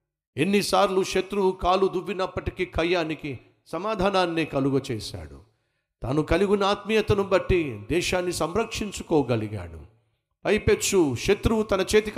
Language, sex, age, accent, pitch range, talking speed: Telugu, male, 50-69, native, 130-200 Hz, 90 wpm